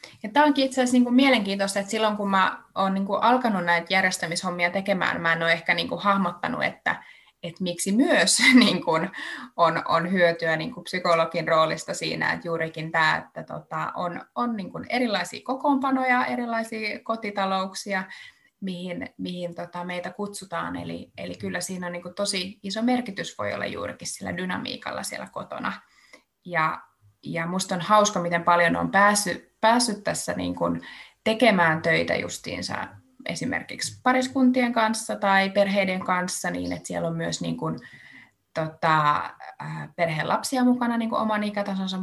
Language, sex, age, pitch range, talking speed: Finnish, female, 20-39, 170-210 Hz, 150 wpm